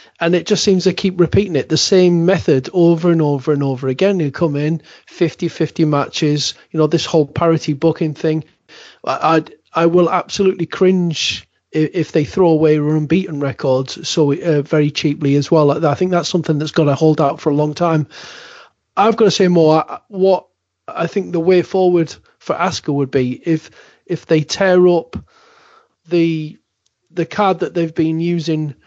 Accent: British